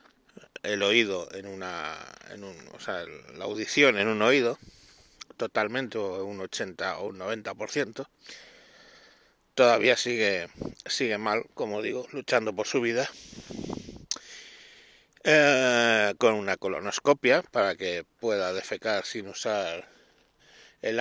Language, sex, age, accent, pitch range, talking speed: Spanish, male, 60-79, Spanish, 115-160 Hz, 115 wpm